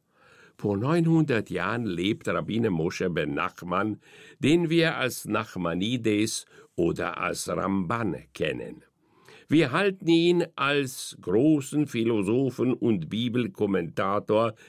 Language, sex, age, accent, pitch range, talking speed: German, male, 60-79, German, 115-160 Hz, 95 wpm